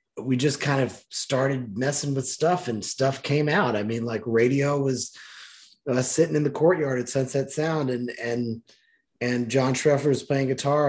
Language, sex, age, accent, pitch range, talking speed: English, male, 20-39, American, 125-145 Hz, 180 wpm